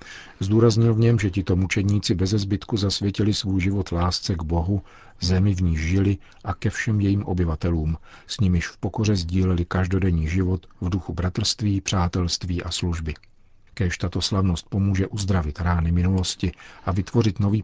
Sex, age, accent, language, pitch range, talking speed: male, 50-69, native, Czech, 90-100 Hz, 155 wpm